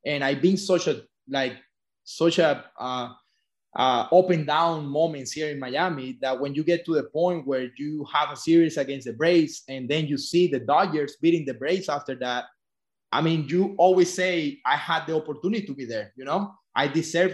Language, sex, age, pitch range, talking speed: English, male, 20-39, 145-175 Hz, 190 wpm